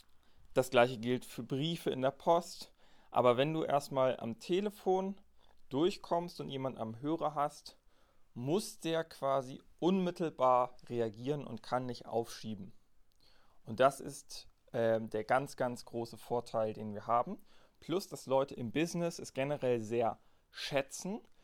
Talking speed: 140 wpm